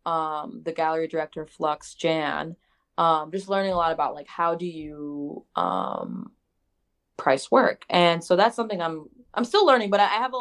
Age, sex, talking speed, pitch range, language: 20-39, female, 175 wpm, 160-205 Hz, English